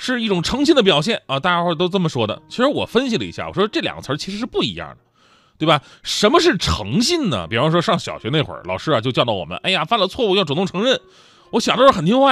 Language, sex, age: Chinese, male, 30-49